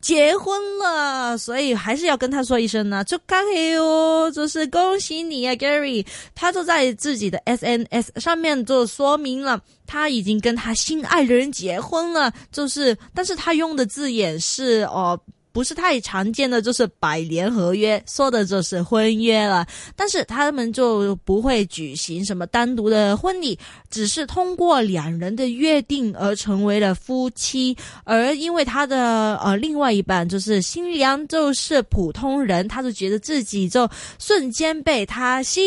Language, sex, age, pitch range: Chinese, female, 20-39, 210-305 Hz